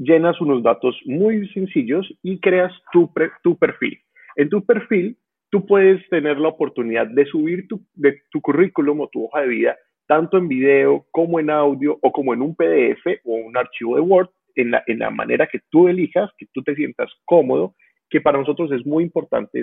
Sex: male